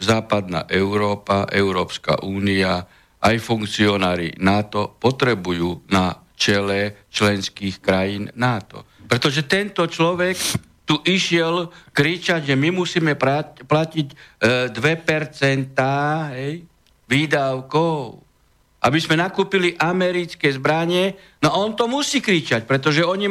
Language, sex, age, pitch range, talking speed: Slovak, male, 60-79, 125-175 Hz, 95 wpm